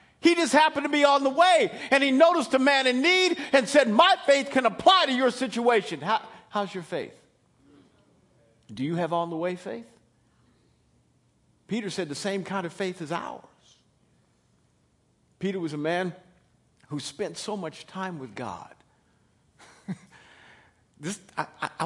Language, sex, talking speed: English, male, 160 wpm